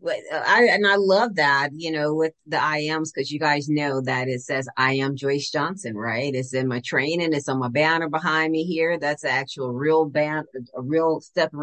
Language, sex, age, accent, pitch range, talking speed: English, female, 40-59, American, 135-165 Hz, 215 wpm